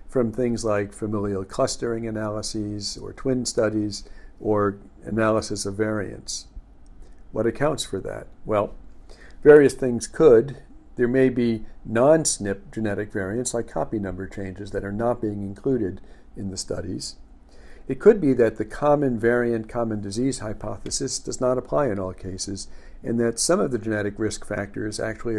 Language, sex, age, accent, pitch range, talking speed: English, male, 50-69, American, 100-120 Hz, 150 wpm